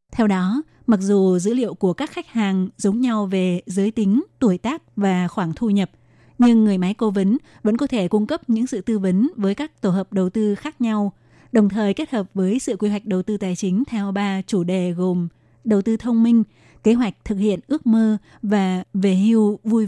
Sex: female